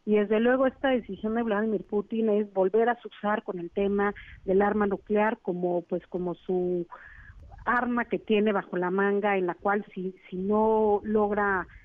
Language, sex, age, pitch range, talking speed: Spanish, female, 40-59, 190-215 Hz, 175 wpm